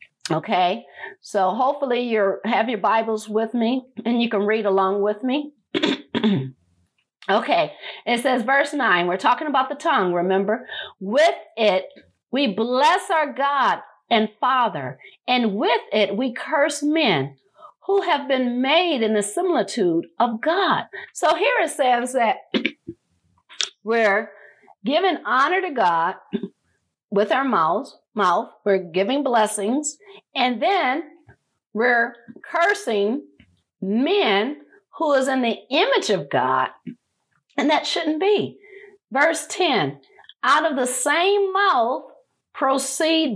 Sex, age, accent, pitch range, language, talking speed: female, 50-69, American, 220-335 Hz, English, 125 wpm